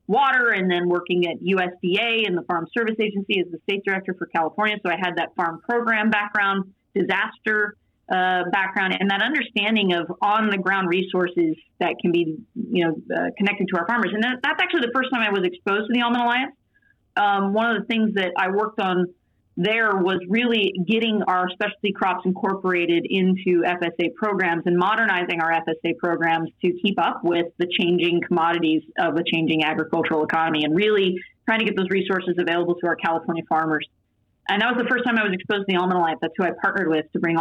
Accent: American